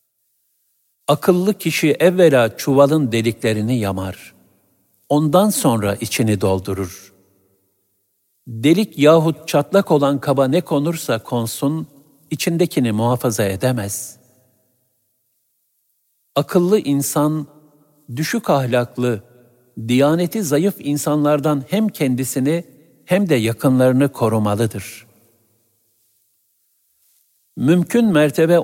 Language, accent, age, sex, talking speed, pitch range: Turkish, native, 60-79, male, 75 wpm, 110-150 Hz